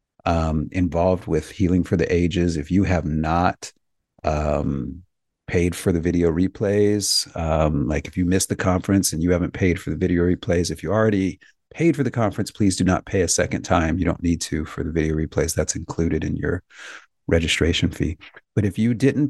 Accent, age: American, 40-59